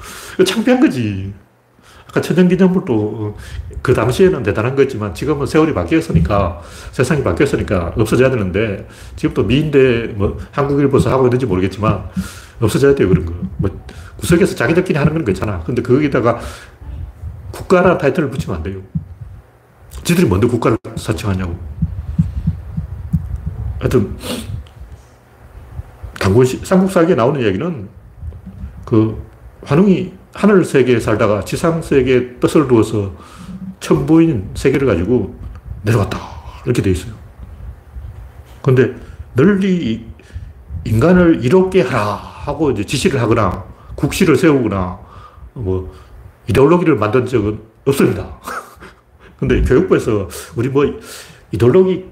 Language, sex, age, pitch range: Korean, male, 40-59, 95-160 Hz